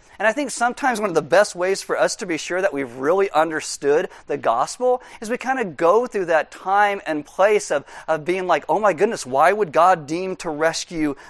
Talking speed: 230 wpm